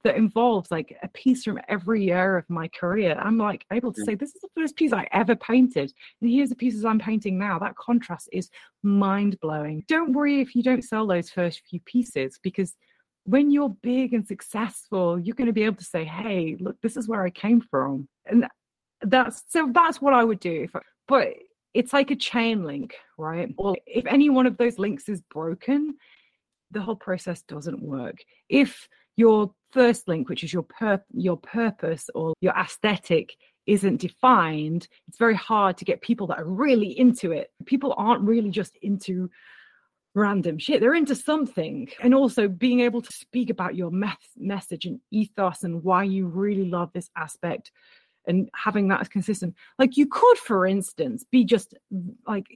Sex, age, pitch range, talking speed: female, 30-49, 180-245 Hz, 190 wpm